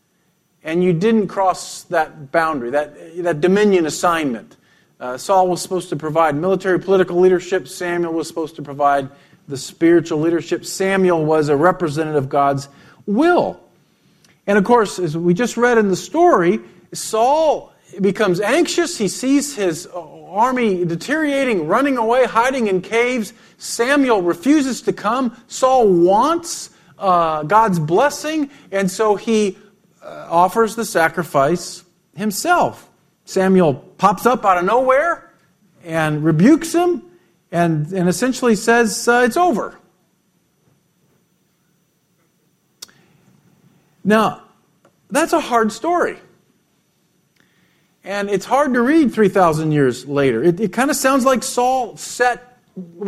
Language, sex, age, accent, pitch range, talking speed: English, male, 50-69, American, 170-235 Hz, 125 wpm